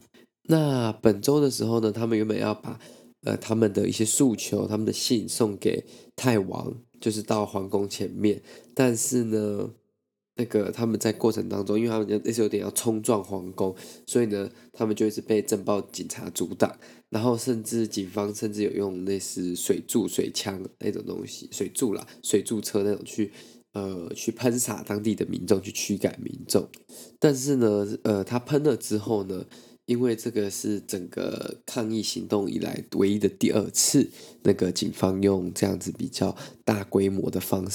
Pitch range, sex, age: 100-115 Hz, male, 20-39